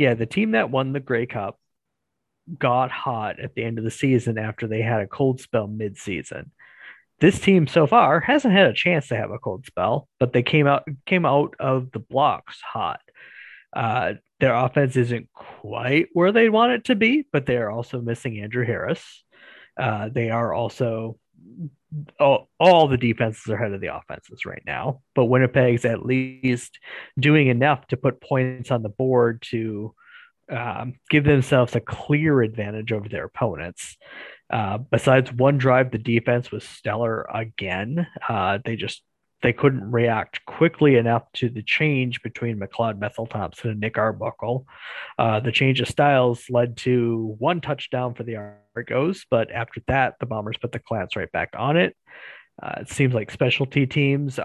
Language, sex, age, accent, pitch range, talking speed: English, male, 30-49, American, 115-145 Hz, 175 wpm